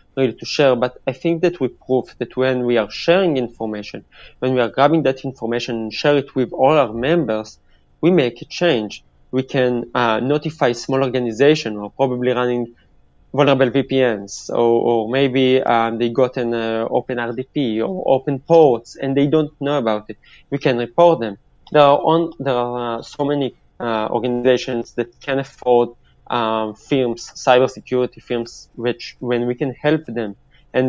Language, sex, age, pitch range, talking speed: English, male, 20-39, 115-135 Hz, 175 wpm